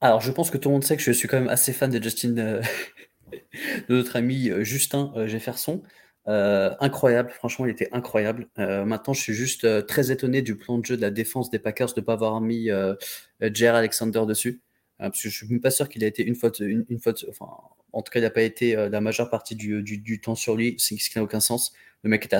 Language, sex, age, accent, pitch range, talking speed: French, male, 30-49, French, 105-120 Hz, 265 wpm